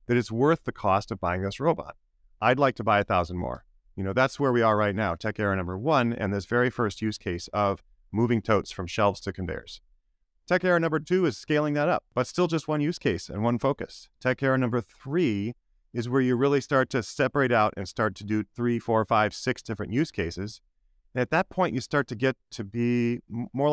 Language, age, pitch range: English, 40-59, 95-130 Hz